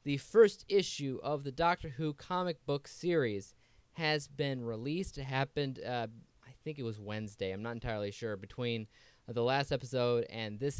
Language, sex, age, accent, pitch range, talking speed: English, male, 20-39, American, 115-150 Hz, 180 wpm